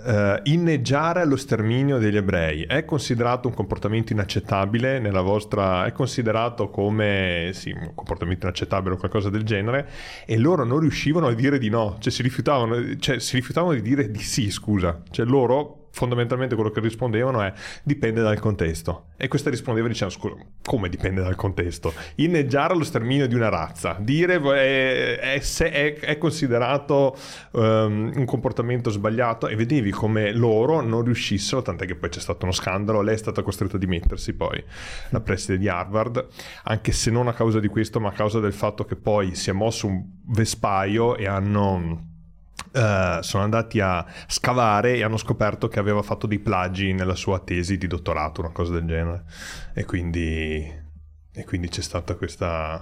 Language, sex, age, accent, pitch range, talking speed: Italian, male, 30-49, native, 95-125 Hz, 170 wpm